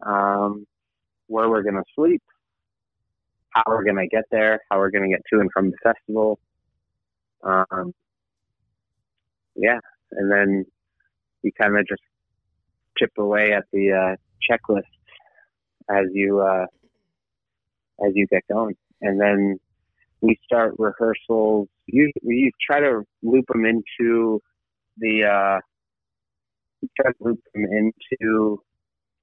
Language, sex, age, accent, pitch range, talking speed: English, male, 20-39, American, 100-115 Hz, 125 wpm